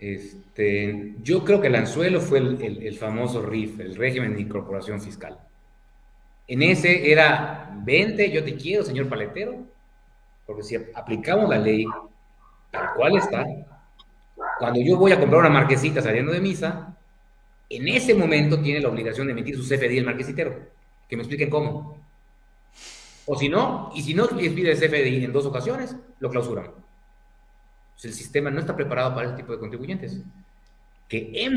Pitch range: 115-165 Hz